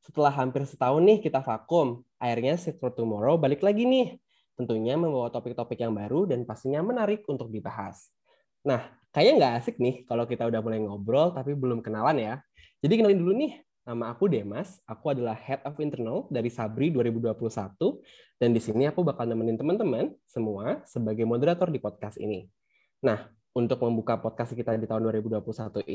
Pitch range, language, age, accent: 110-150 Hz, Indonesian, 10-29, native